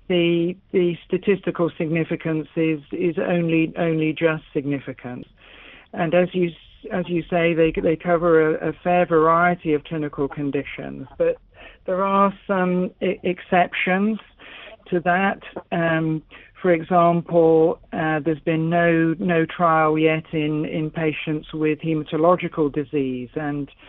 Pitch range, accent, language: 150-175 Hz, British, English